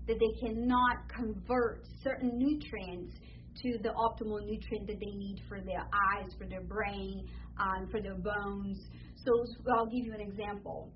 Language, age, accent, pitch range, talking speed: English, 30-49, American, 210-250 Hz, 165 wpm